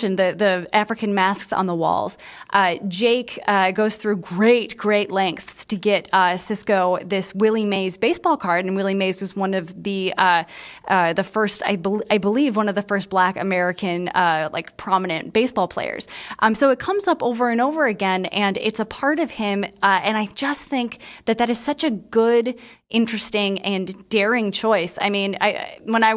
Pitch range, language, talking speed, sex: 190-235 Hz, English, 195 wpm, female